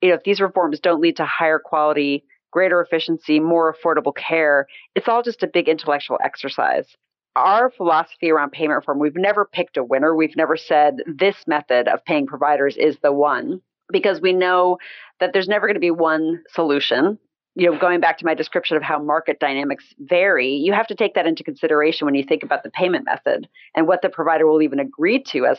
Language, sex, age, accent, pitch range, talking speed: English, female, 40-59, American, 155-185 Hz, 210 wpm